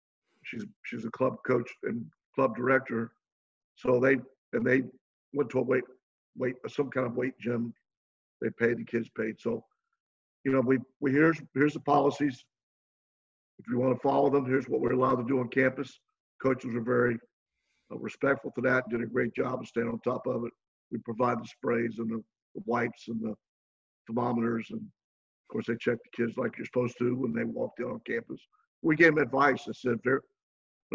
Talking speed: 200 wpm